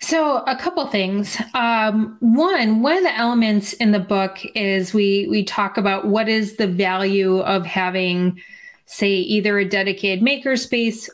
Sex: female